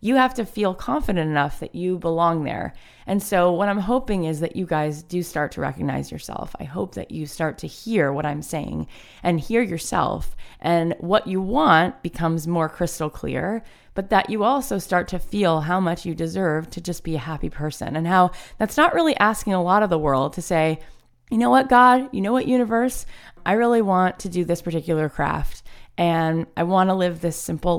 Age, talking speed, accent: 20-39, 210 wpm, American